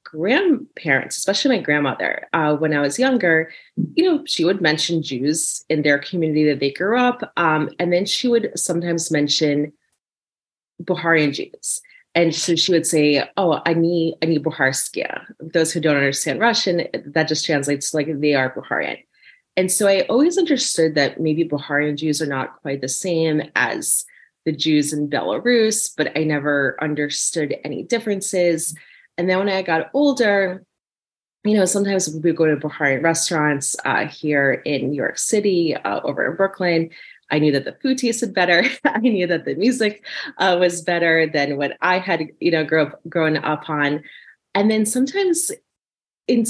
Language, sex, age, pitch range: English, female, 30-49, 150-190 Hz